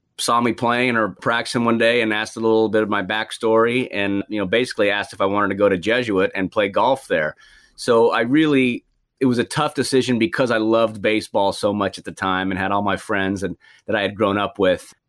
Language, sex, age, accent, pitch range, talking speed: English, male, 30-49, American, 95-115 Hz, 240 wpm